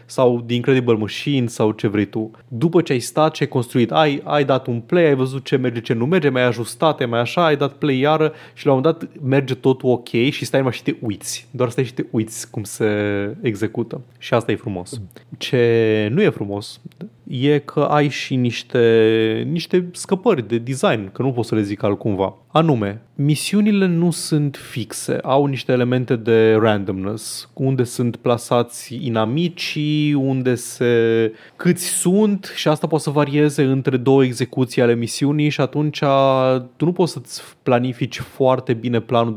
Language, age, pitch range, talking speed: Romanian, 20-39, 115-145 Hz, 175 wpm